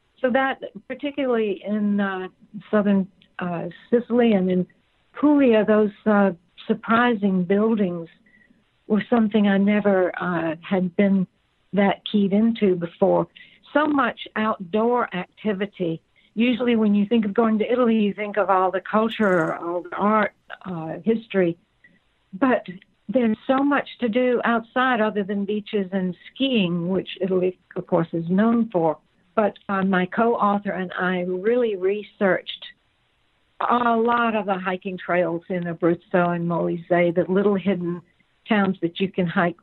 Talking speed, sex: 140 wpm, female